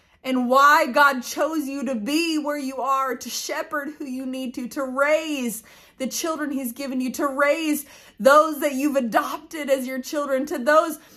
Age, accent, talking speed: 20-39, American, 185 wpm